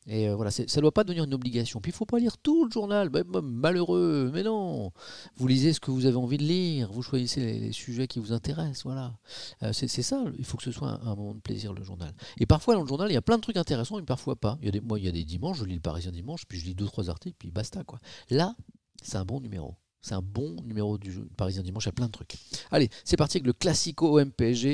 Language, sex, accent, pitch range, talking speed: French, male, French, 105-140 Hz, 290 wpm